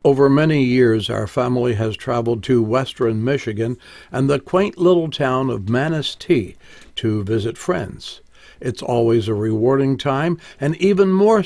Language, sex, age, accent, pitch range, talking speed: English, male, 60-79, American, 115-160 Hz, 145 wpm